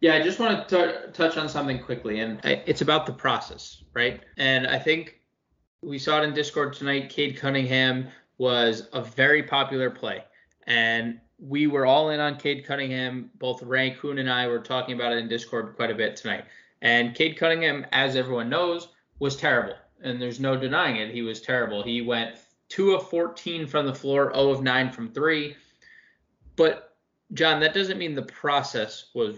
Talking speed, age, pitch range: 185 wpm, 20-39, 125-160 Hz